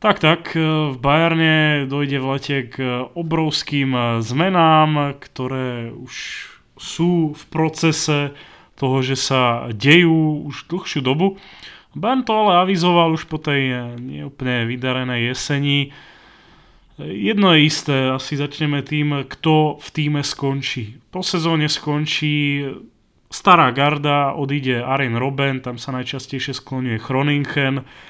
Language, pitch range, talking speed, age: Slovak, 125-150 Hz, 115 wpm, 30-49